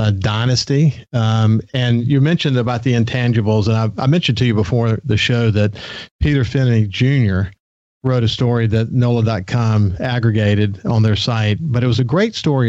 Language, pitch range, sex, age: English, 110-130 Hz, male, 50-69